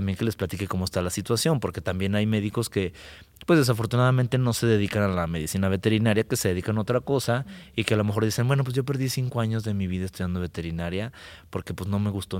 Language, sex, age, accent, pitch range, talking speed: Spanish, male, 30-49, Mexican, 95-110 Hz, 240 wpm